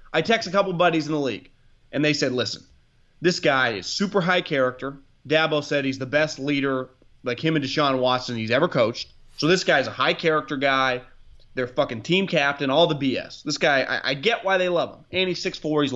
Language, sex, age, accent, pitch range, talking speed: English, male, 30-49, American, 125-165 Hz, 225 wpm